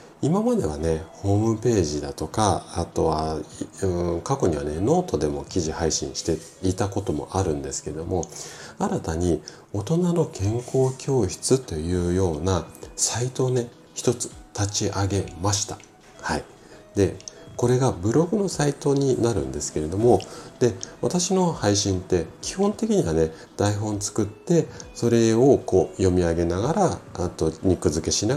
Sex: male